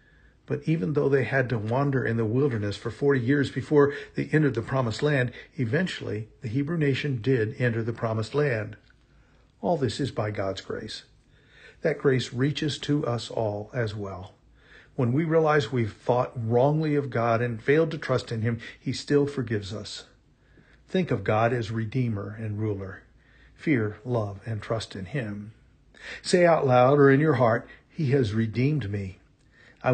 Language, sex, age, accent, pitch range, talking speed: English, male, 50-69, American, 110-140 Hz, 170 wpm